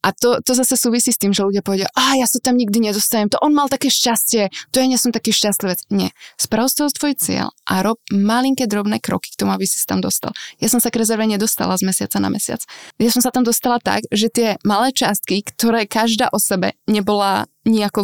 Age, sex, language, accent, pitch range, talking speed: 20-39, female, Czech, native, 195-235 Hz, 230 wpm